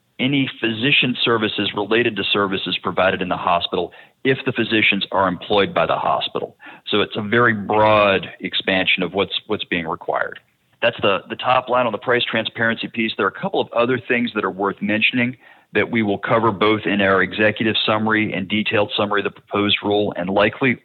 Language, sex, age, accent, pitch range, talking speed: English, male, 40-59, American, 100-115 Hz, 195 wpm